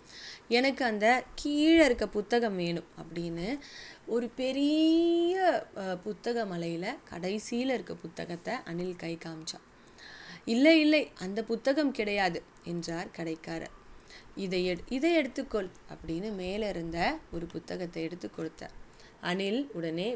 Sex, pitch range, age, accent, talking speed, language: female, 170-240 Hz, 20-39, Indian, 100 wpm, English